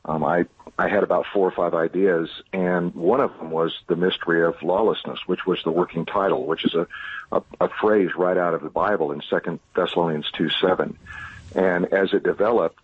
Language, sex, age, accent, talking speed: English, male, 50-69, American, 200 wpm